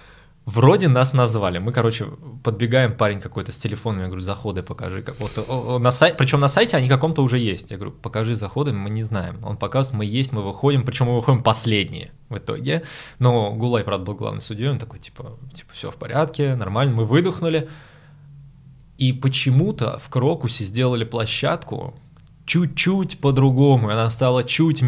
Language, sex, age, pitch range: Russian, male, 20-39, 110-140 Hz